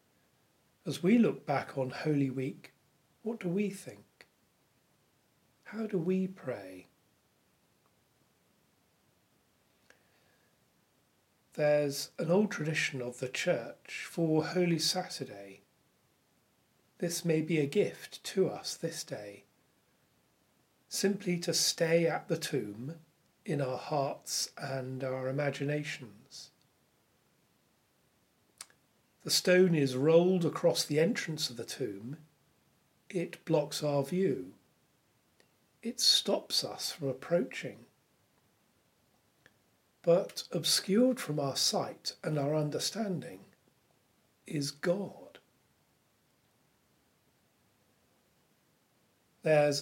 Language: English